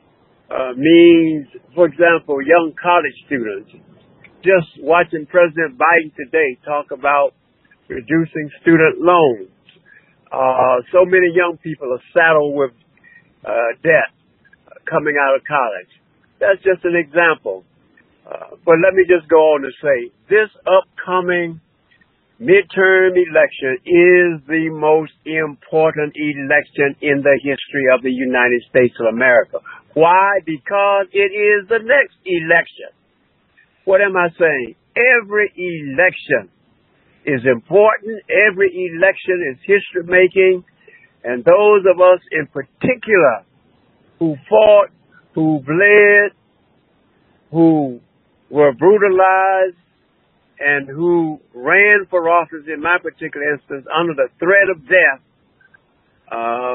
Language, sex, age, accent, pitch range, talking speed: English, male, 60-79, American, 150-190 Hz, 115 wpm